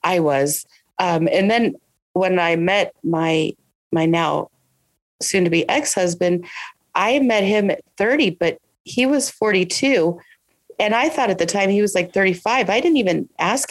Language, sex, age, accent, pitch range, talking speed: English, female, 30-49, American, 160-195 Hz, 165 wpm